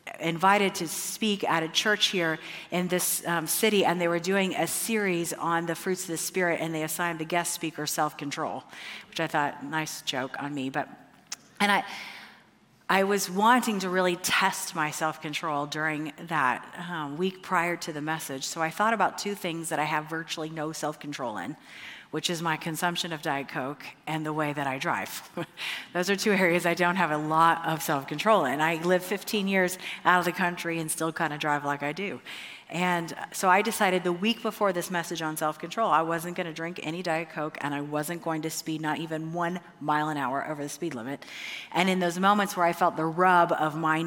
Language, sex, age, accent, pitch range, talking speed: English, female, 40-59, American, 155-180 Hz, 210 wpm